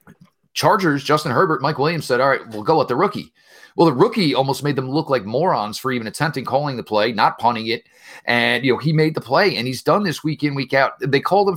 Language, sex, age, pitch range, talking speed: English, male, 30-49, 120-165 Hz, 255 wpm